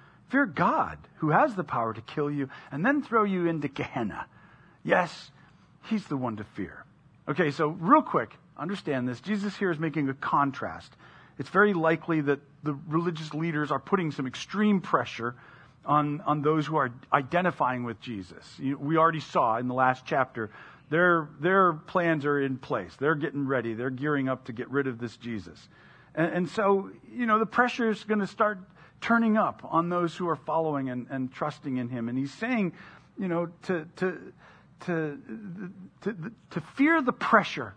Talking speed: 185 wpm